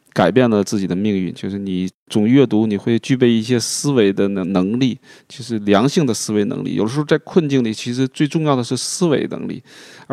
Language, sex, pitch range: Chinese, male, 110-145 Hz